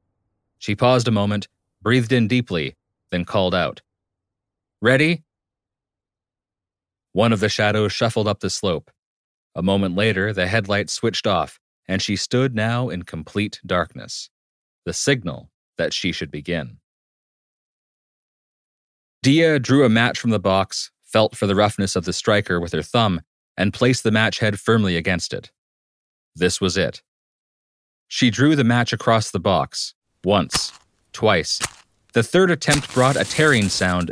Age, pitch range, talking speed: 30-49, 95-120 Hz, 145 wpm